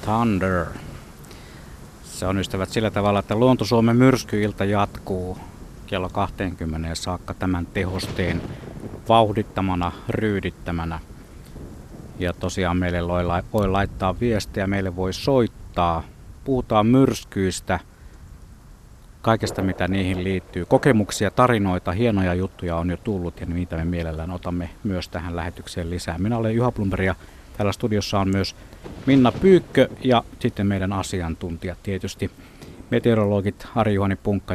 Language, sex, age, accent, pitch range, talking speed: Finnish, male, 60-79, native, 85-105 Hz, 120 wpm